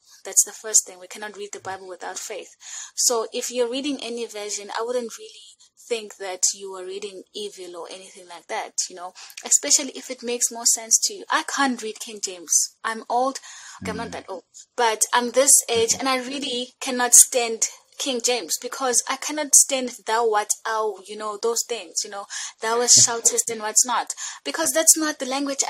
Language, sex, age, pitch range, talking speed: English, female, 20-39, 210-285 Hz, 200 wpm